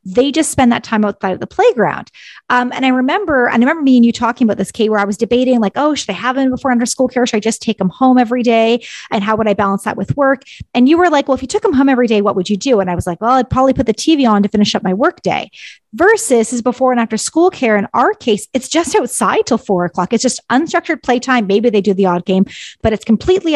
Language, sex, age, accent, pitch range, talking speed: English, female, 30-49, American, 205-270 Hz, 295 wpm